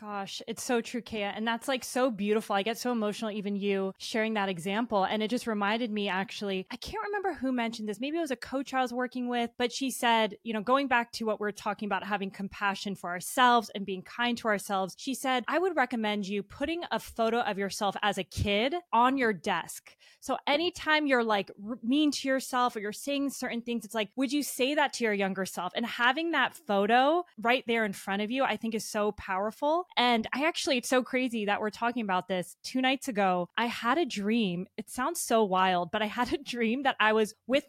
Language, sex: English, female